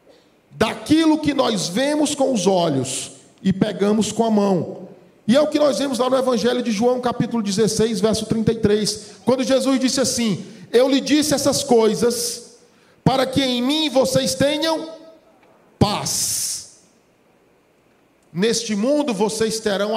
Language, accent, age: Portuguese, Brazilian, 50-69